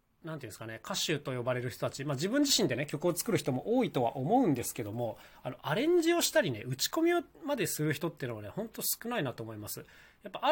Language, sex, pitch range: Japanese, male, 120-170 Hz